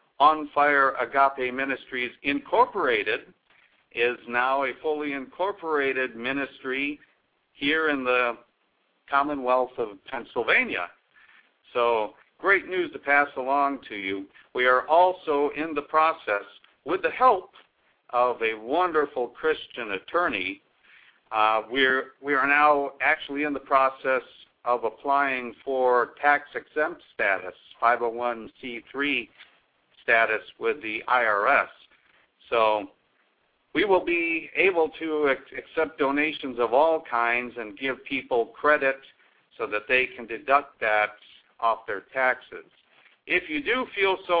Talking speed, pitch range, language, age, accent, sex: 120 wpm, 120-150 Hz, English, 60-79, American, male